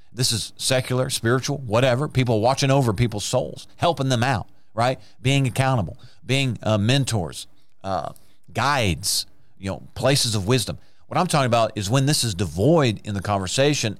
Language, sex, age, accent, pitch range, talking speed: English, male, 40-59, American, 105-140 Hz, 165 wpm